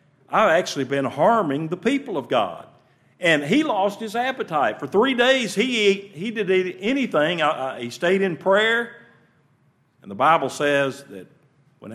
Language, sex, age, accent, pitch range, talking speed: English, male, 50-69, American, 115-145 Hz, 160 wpm